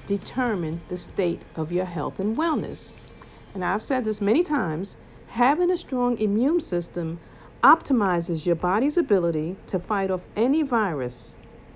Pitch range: 175-255 Hz